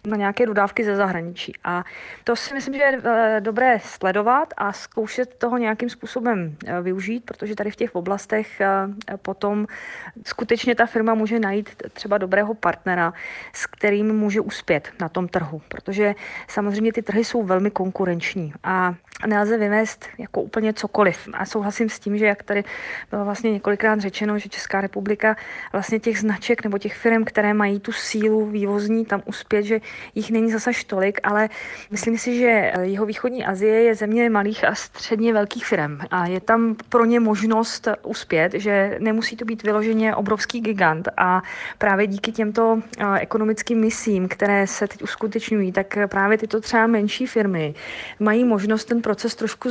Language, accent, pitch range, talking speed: Czech, native, 200-225 Hz, 160 wpm